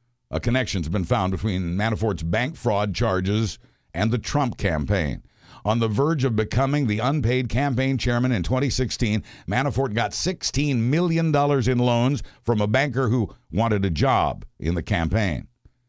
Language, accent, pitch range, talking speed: English, American, 100-125 Hz, 150 wpm